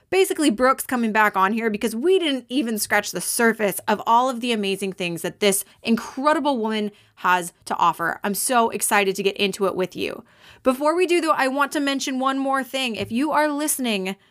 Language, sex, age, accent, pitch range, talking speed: English, female, 20-39, American, 210-285 Hz, 210 wpm